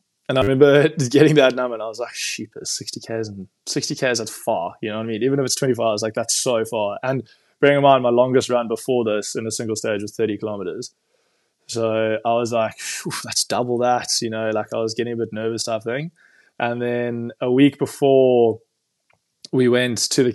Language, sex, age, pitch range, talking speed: English, male, 20-39, 110-125 Hz, 210 wpm